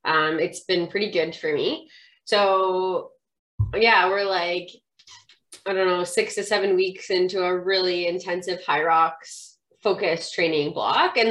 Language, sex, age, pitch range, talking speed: English, female, 20-39, 170-225 Hz, 150 wpm